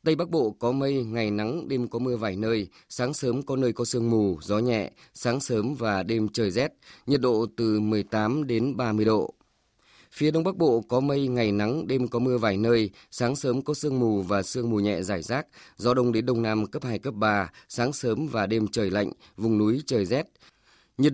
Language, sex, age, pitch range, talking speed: Vietnamese, male, 20-39, 105-130 Hz, 220 wpm